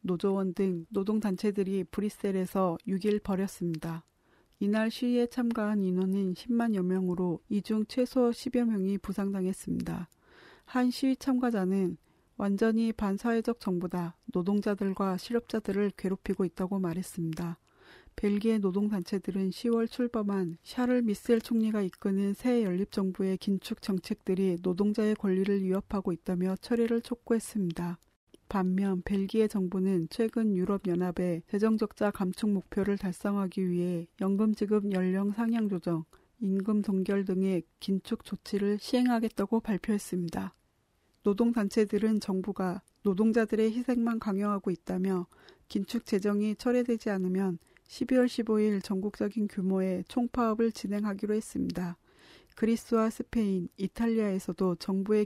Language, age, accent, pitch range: Korean, 40-59, native, 185-220 Hz